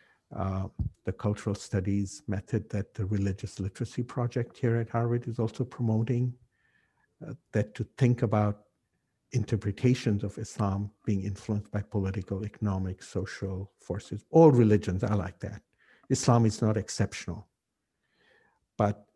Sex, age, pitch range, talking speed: male, 60-79, 100-115 Hz, 130 wpm